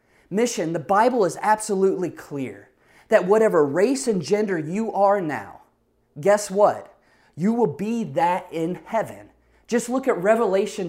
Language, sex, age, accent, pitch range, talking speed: English, male, 30-49, American, 180-245 Hz, 145 wpm